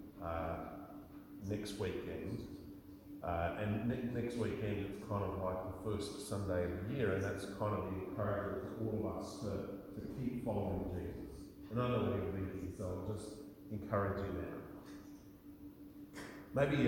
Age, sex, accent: 40-59, male, Australian